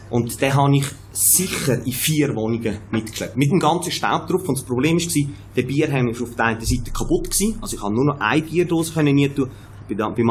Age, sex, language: 30-49, male, German